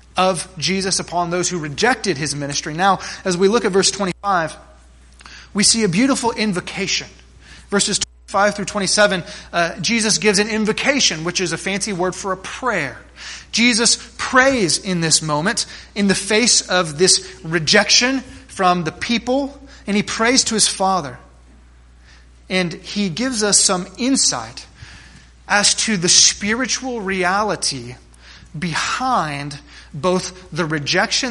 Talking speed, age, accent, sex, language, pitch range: 140 wpm, 30-49, American, male, English, 160-215 Hz